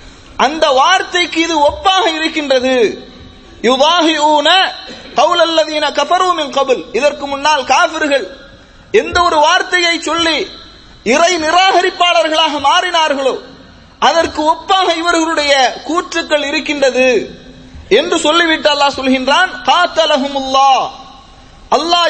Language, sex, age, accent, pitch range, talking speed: English, male, 30-49, Indian, 295-360 Hz, 95 wpm